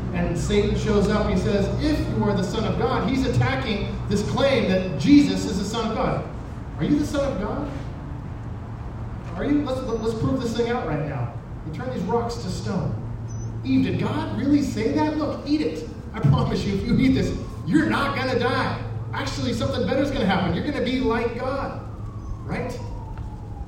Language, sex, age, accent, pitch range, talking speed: English, male, 30-49, American, 130-200 Hz, 205 wpm